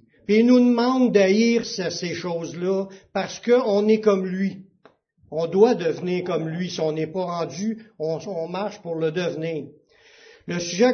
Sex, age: male, 60-79